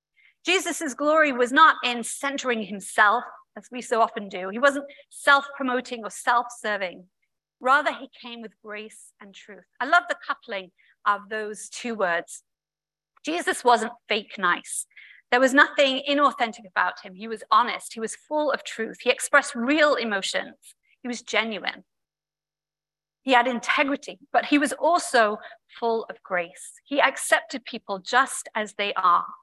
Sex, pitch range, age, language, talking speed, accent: female, 215-290 Hz, 40-59, English, 150 wpm, British